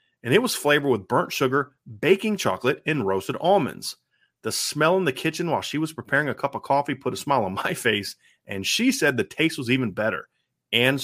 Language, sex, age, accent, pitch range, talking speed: English, male, 30-49, American, 125-190 Hz, 215 wpm